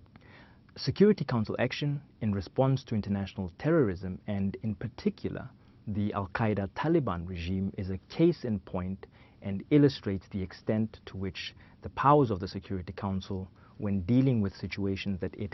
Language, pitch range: English, 95-115 Hz